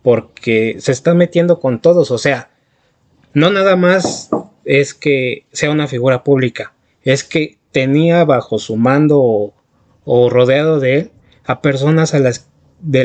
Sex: male